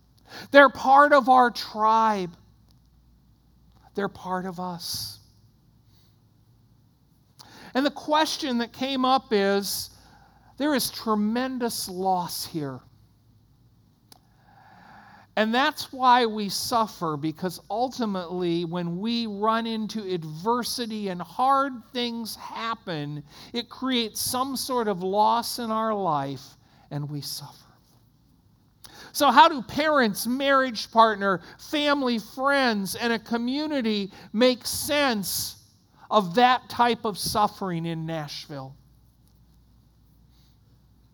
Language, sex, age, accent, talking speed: English, male, 50-69, American, 100 wpm